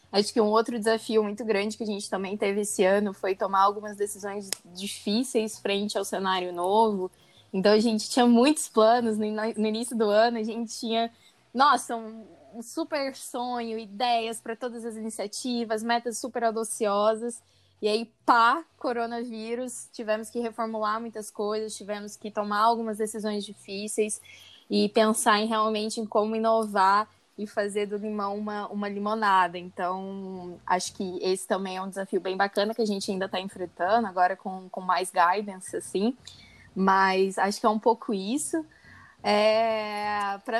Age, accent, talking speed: 10-29, Brazilian, 160 wpm